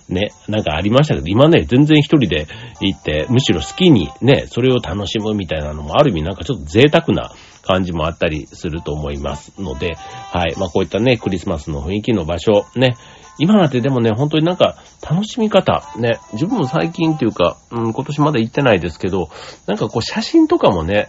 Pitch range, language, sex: 85-130 Hz, Japanese, male